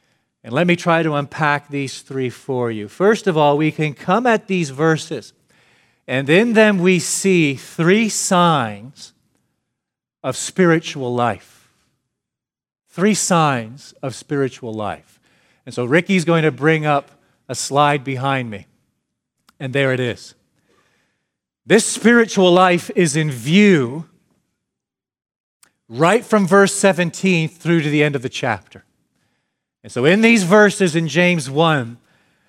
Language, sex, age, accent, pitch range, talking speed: English, male, 40-59, American, 140-180 Hz, 135 wpm